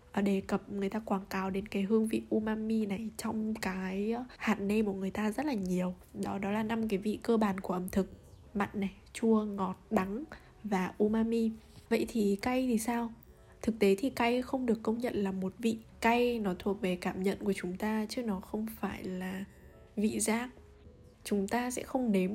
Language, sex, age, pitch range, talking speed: Vietnamese, female, 10-29, 195-235 Hz, 205 wpm